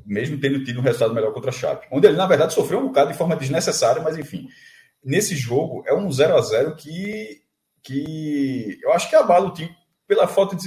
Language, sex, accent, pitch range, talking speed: Portuguese, male, Brazilian, 140-220 Hz, 215 wpm